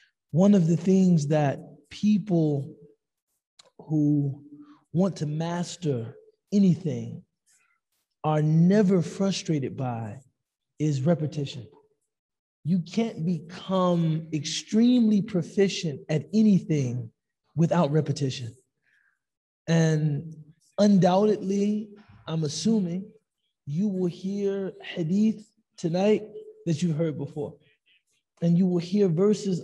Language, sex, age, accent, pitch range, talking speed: English, male, 20-39, American, 155-200 Hz, 90 wpm